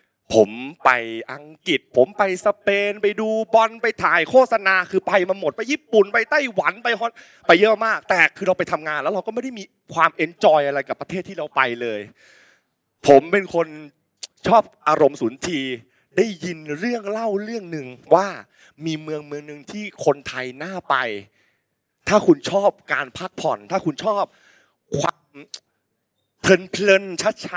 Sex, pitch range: male, 145-215 Hz